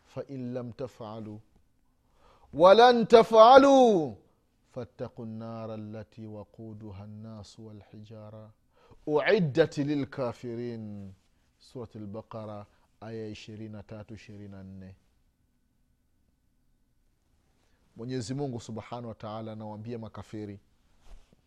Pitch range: 105-170 Hz